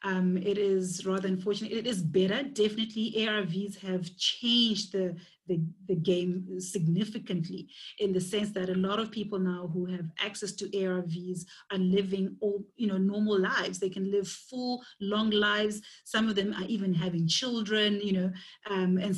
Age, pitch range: 30-49, 180-210 Hz